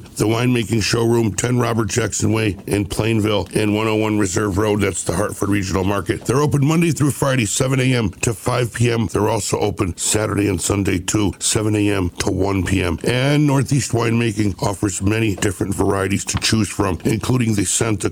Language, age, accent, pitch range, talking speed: English, 60-79, American, 100-115 Hz, 175 wpm